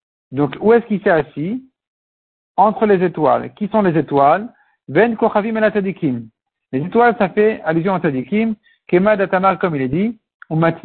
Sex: male